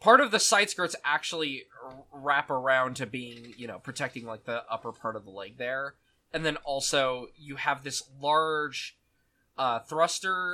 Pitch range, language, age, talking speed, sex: 120-150 Hz, English, 10-29, 170 wpm, male